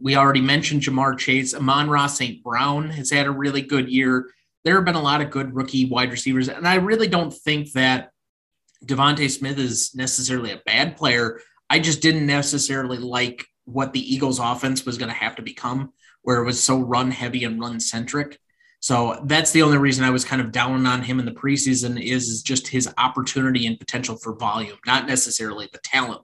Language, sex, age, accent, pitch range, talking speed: English, male, 30-49, American, 125-145 Hz, 205 wpm